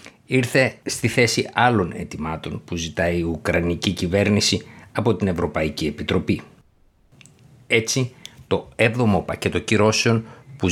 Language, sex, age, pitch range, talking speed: Greek, male, 50-69, 90-115 Hz, 110 wpm